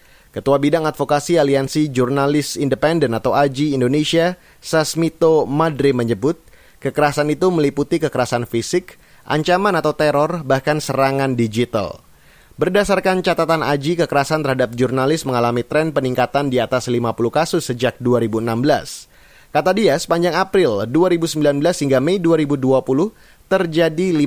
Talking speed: 115 wpm